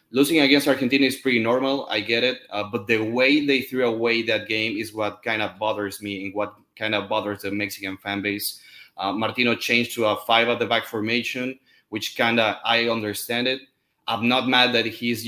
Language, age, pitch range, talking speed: English, 20-39, 110-140 Hz, 210 wpm